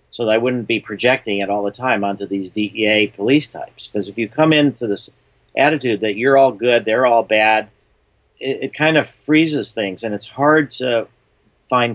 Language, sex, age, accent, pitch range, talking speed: English, male, 50-69, American, 100-125 Hz, 200 wpm